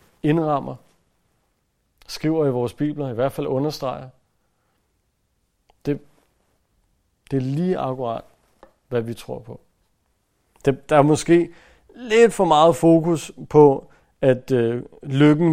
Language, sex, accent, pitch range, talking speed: Danish, male, native, 115-150 Hz, 115 wpm